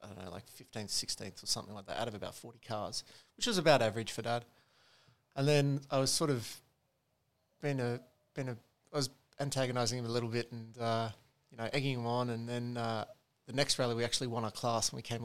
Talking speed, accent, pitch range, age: 230 wpm, Australian, 115-135 Hz, 20-39